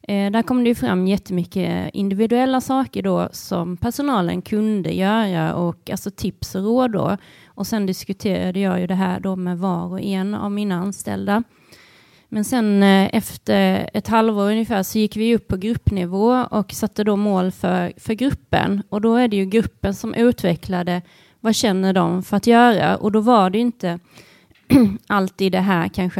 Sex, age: female, 30-49